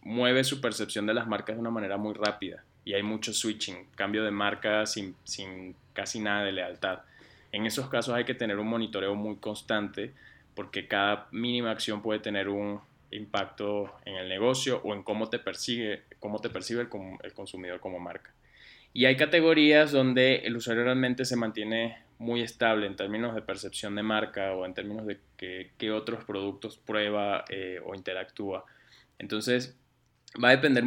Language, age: Spanish, 20-39